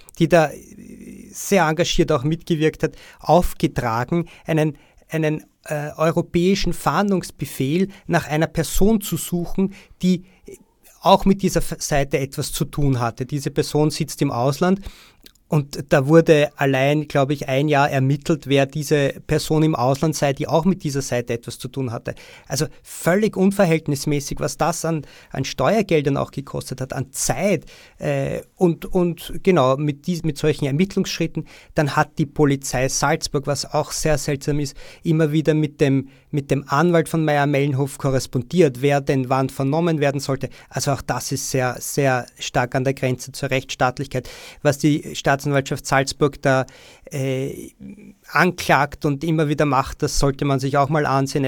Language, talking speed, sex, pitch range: German, 155 wpm, male, 135-165 Hz